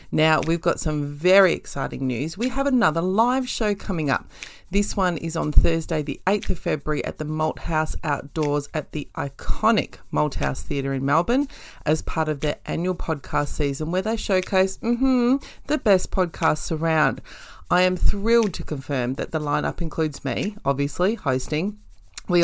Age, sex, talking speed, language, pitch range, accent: 30-49, female, 170 wpm, English, 145-185 Hz, Australian